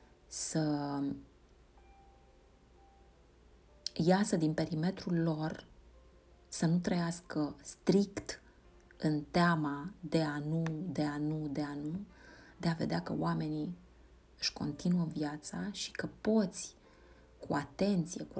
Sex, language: female, Romanian